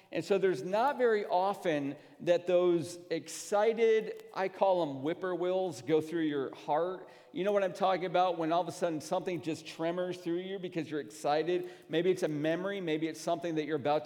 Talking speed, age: 195 wpm, 40-59